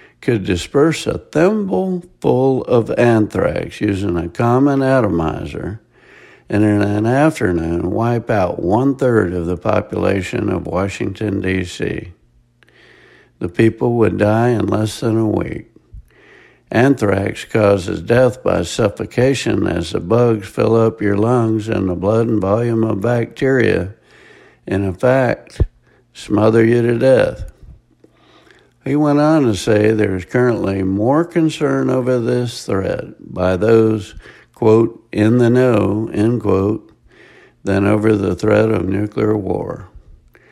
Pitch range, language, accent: 100-125 Hz, English, American